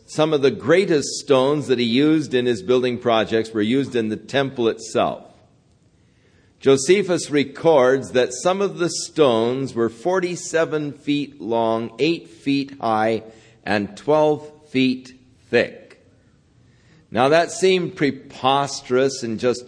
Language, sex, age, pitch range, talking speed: English, male, 50-69, 120-160 Hz, 130 wpm